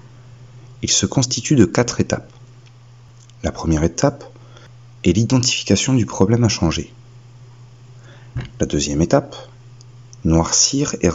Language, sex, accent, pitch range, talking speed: French, male, French, 105-120 Hz, 110 wpm